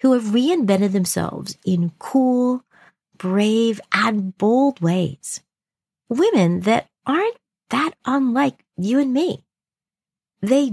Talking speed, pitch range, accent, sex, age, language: 105 wpm, 180-265 Hz, American, female, 40-59, English